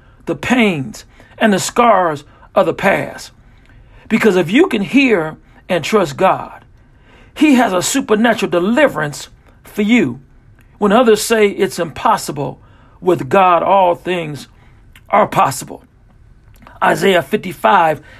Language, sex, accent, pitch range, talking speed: English, male, American, 150-225 Hz, 120 wpm